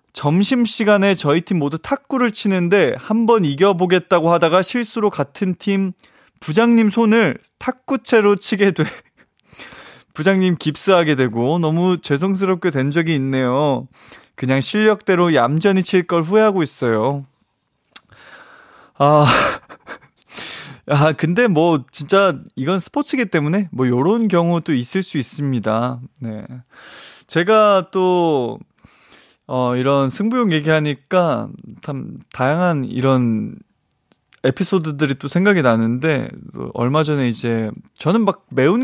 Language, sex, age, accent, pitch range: Korean, male, 20-39, native, 135-205 Hz